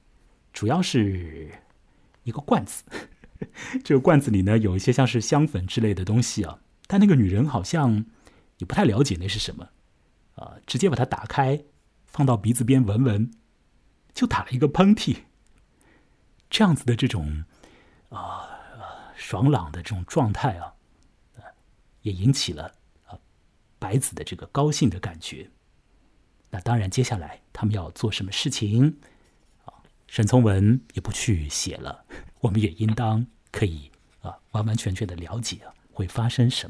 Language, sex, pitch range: Chinese, male, 95-130 Hz